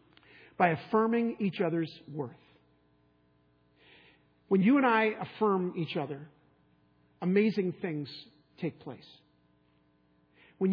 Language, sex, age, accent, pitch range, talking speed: English, male, 50-69, American, 160-195 Hz, 95 wpm